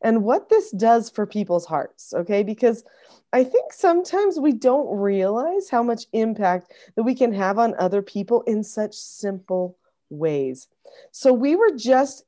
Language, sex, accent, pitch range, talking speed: English, female, American, 175-230 Hz, 160 wpm